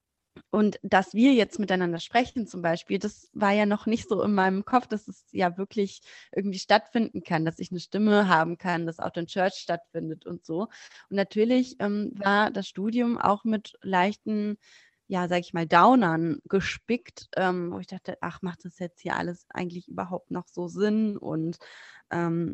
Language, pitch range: German, 170-200 Hz